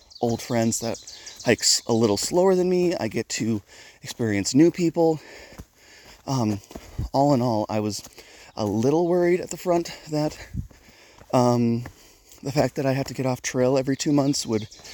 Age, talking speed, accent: 30-49, 170 wpm, American